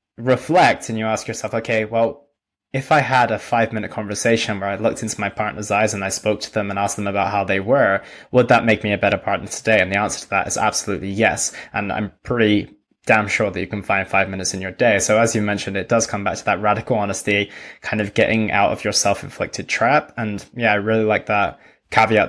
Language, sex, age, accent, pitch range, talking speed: English, male, 20-39, British, 105-115 Hz, 240 wpm